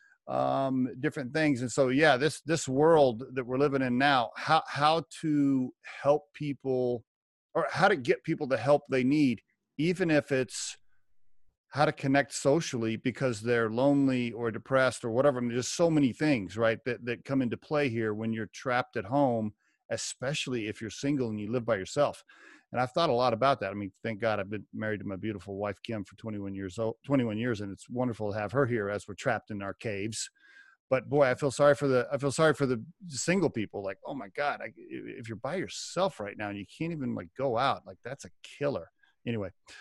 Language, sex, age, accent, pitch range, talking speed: English, male, 40-59, American, 110-145 Hz, 220 wpm